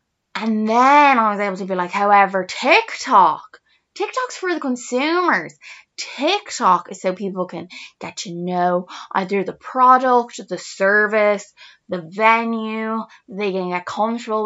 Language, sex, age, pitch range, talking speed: English, female, 10-29, 190-255 Hz, 135 wpm